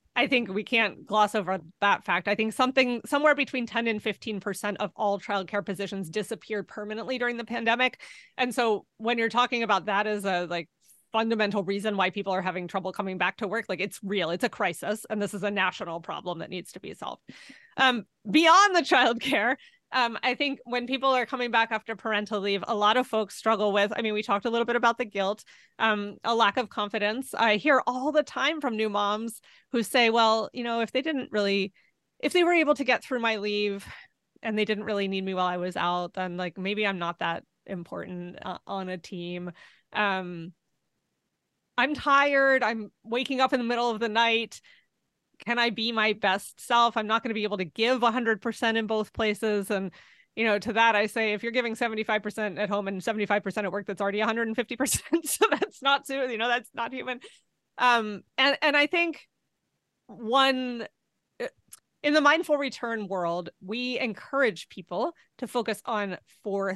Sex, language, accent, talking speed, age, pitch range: female, English, American, 200 wpm, 30-49, 205-250 Hz